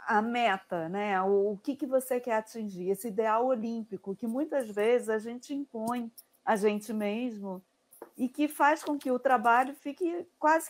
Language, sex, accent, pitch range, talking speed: Portuguese, female, Brazilian, 200-255 Hz, 175 wpm